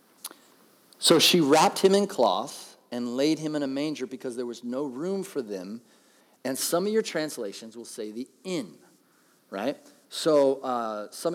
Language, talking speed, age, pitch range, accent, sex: English, 170 wpm, 30-49, 125-170 Hz, American, male